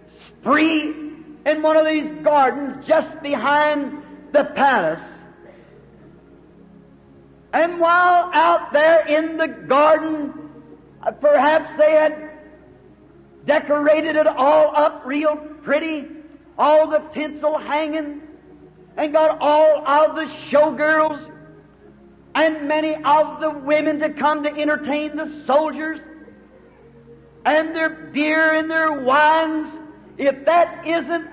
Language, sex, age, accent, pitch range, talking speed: English, male, 50-69, American, 285-315 Hz, 105 wpm